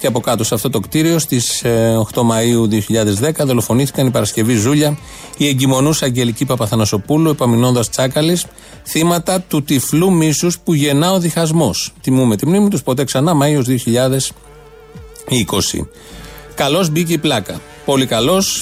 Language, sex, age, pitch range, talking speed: Greek, male, 30-49, 120-160 Hz, 140 wpm